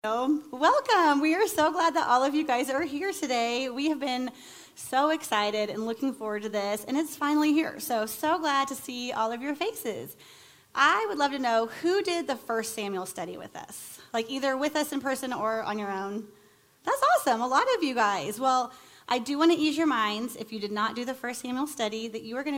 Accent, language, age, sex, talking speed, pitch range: American, English, 30-49, female, 230 wpm, 215-280 Hz